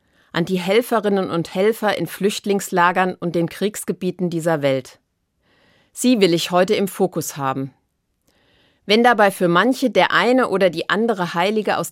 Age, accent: 30-49, German